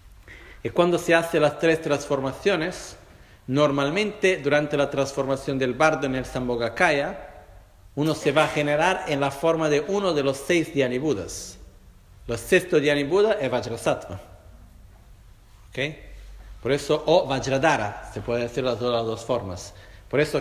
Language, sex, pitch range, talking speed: Italian, male, 100-150 Hz, 145 wpm